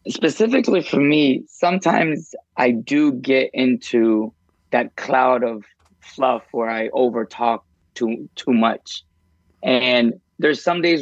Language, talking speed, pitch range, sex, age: English, 120 wpm, 110-140 Hz, male, 20-39